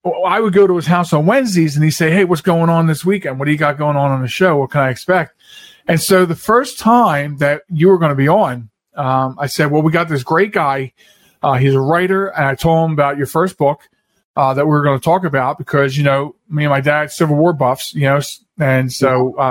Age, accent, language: 40-59, American, English